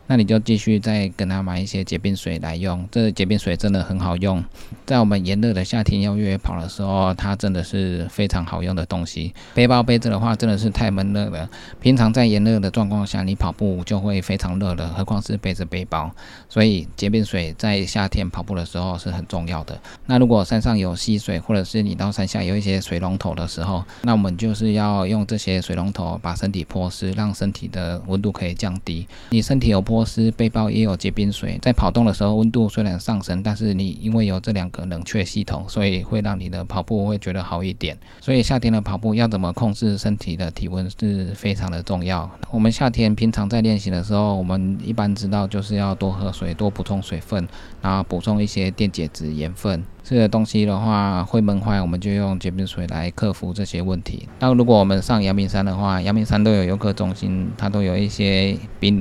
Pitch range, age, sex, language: 90-105 Hz, 20-39, male, Chinese